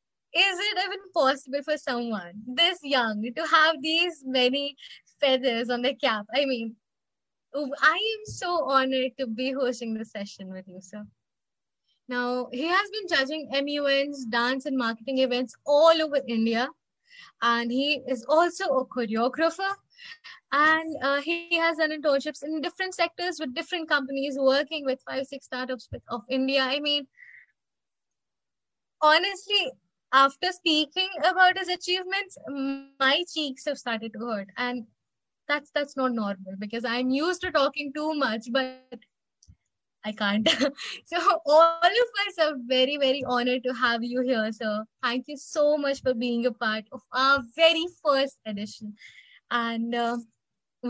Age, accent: 20-39, native